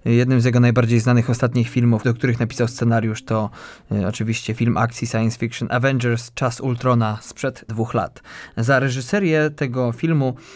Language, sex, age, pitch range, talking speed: Polish, male, 20-39, 115-125 Hz, 155 wpm